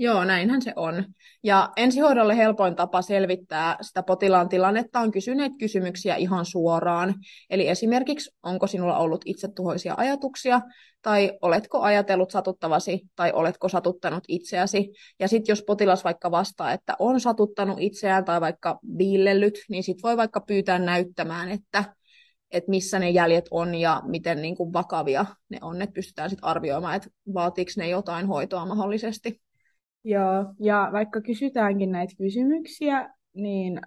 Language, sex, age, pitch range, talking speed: Finnish, female, 20-39, 180-215 Hz, 140 wpm